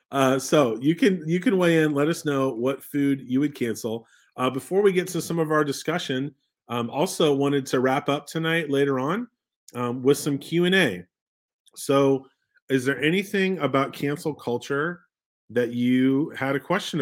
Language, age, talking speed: English, 30-49, 175 wpm